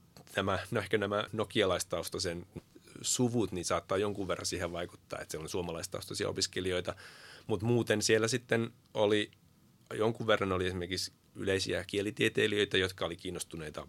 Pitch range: 85-110 Hz